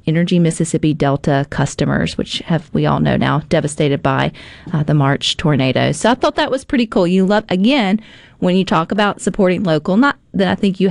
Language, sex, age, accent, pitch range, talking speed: English, female, 40-59, American, 160-230 Hz, 205 wpm